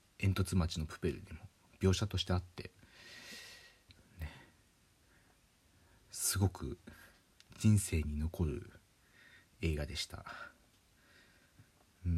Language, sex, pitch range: Japanese, male, 85-110 Hz